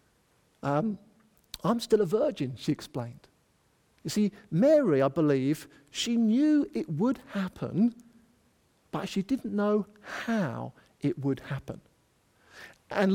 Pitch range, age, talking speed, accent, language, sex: 140-215 Hz, 50-69, 120 wpm, British, English, male